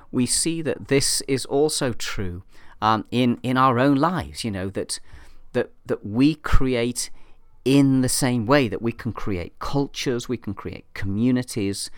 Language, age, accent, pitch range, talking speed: English, 40-59, British, 95-130 Hz, 165 wpm